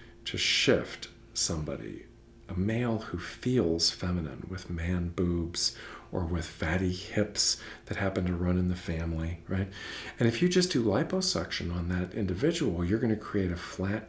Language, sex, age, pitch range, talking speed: English, male, 50-69, 90-125 Hz, 160 wpm